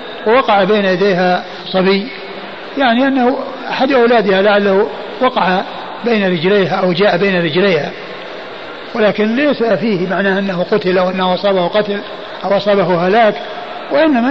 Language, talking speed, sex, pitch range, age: Arabic, 125 wpm, male, 195-235 Hz, 60-79